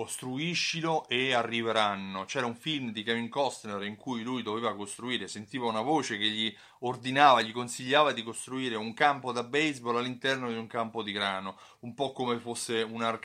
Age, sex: 30-49, male